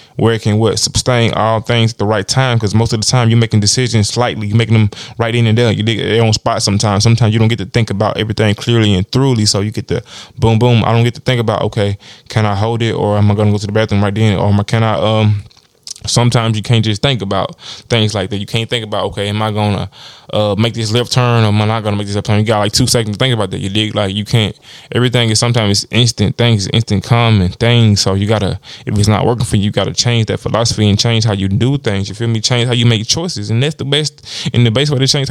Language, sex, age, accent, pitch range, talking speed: English, male, 20-39, American, 105-120 Hz, 285 wpm